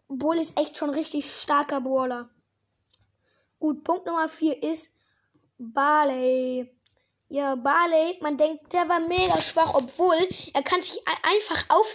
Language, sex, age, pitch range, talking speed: German, female, 20-39, 270-325 Hz, 135 wpm